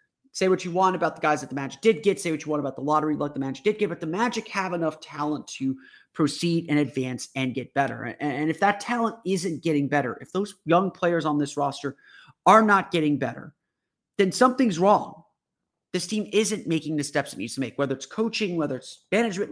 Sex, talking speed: male, 230 wpm